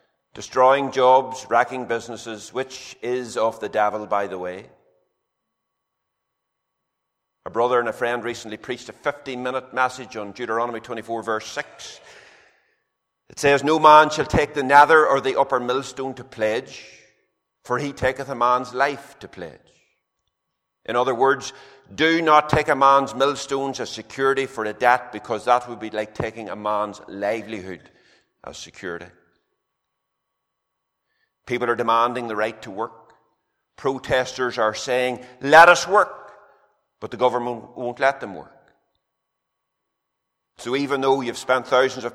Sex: male